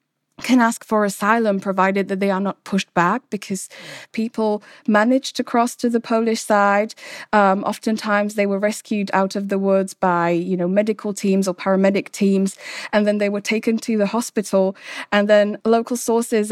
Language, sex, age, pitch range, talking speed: English, female, 20-39, 190-210 Hz, 180 wpm